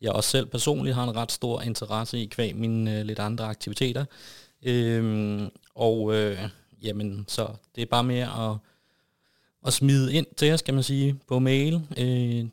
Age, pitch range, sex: 30-49, 110-125 Hz, male